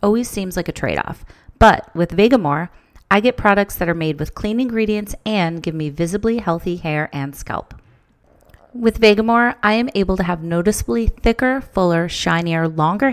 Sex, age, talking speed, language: female, 30-49, 170 wpm, English